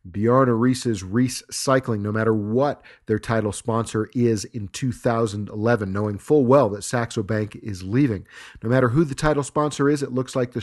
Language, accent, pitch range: English, American, 110-130 Hz